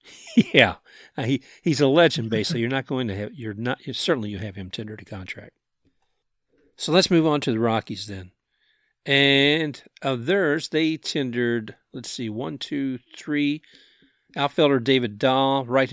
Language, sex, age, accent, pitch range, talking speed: English, male, 50-69, American, 110-140 Hz, 160 wpm